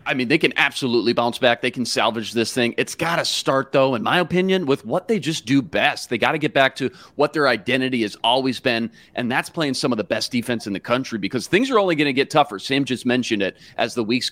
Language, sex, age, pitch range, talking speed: English, male, 30-49, 120-150 Hz, 270 wpm